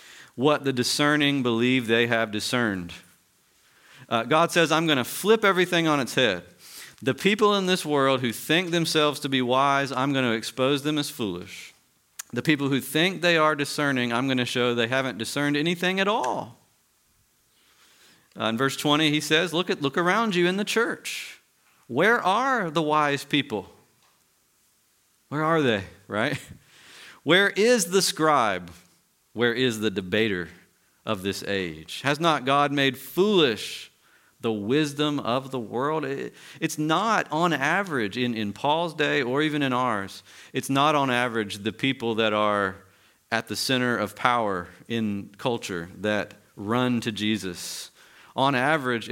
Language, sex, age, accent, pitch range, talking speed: English, male, 40-59, American, 110-155 Hz, 155 wpm